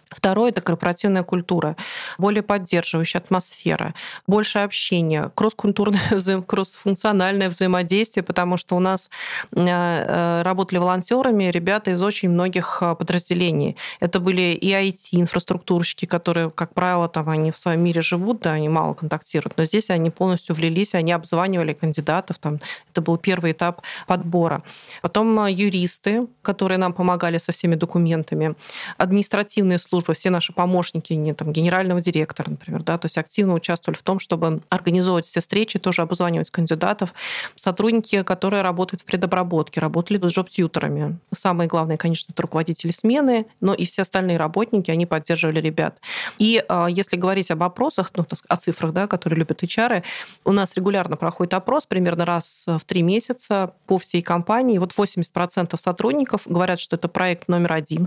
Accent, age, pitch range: native, 30-49, 170-195 Hz